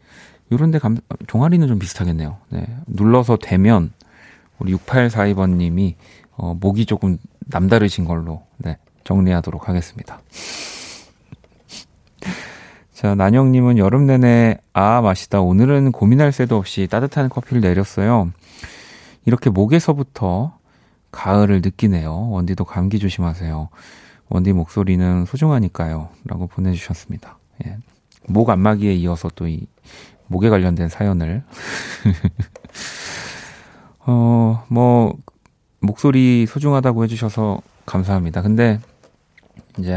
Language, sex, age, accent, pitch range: Korean, male, 30-49, native, 90-115 Hz